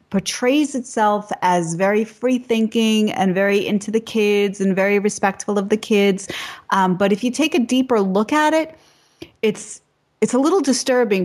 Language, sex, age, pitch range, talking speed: English, female, 30-49, 185-220 Hz, 170 wpm